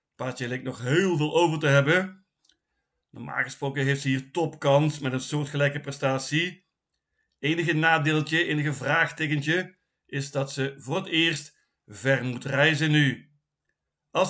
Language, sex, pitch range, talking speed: Dutch, male, 135-160 Hz, 140 wpm